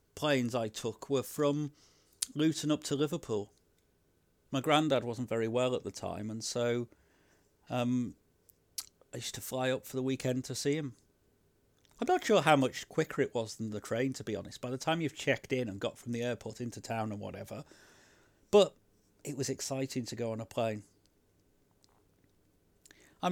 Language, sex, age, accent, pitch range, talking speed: English, male, 40-59, British, 105-135 Hz, 180 wpm